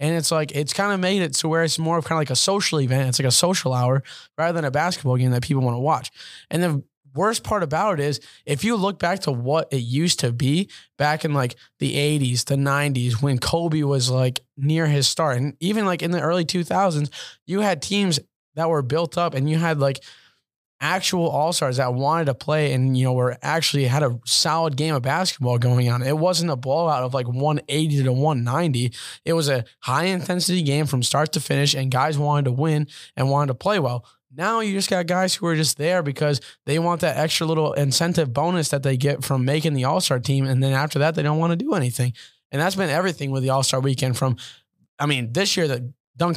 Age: 10-29